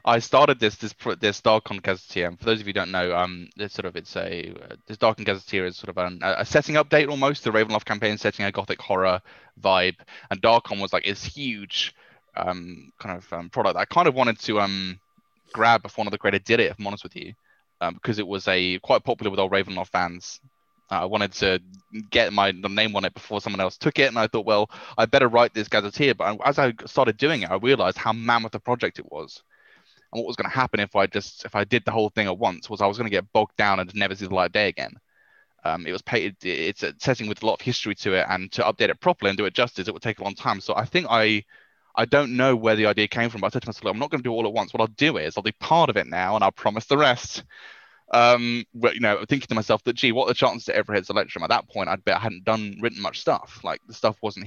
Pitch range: 100-120 Hz